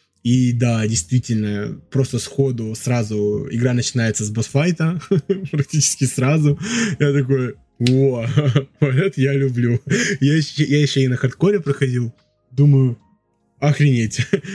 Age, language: 20-39, Russian